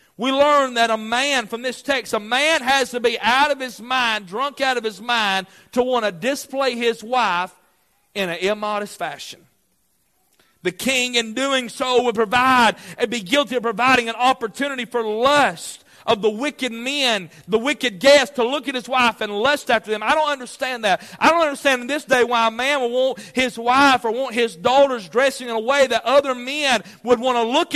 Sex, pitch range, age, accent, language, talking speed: male, 220-270 Hz, 40-59, American, English, 210 wpm